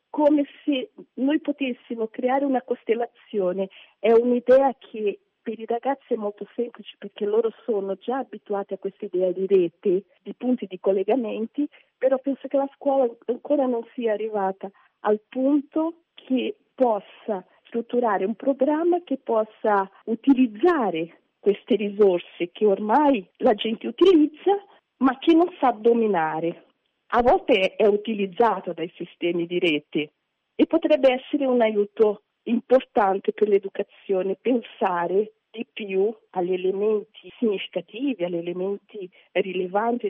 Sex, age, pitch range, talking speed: female, 50-69, 190-255 Hz, 130 wpm